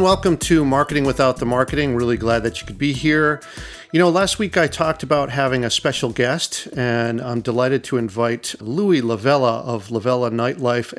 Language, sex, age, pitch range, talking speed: English, male, 40-59, 120-160 Hz, 185 wpm